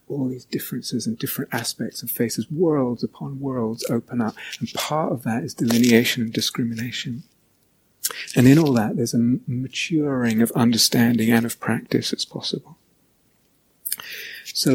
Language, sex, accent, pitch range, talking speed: English, male, British, 115-130 Hz, 145 wpm